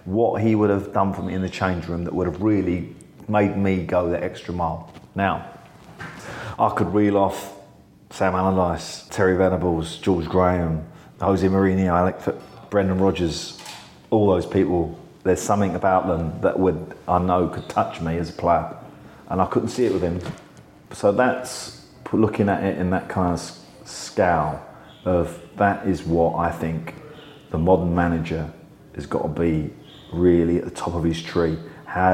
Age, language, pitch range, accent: 40-59, English, 85-95 Hz, British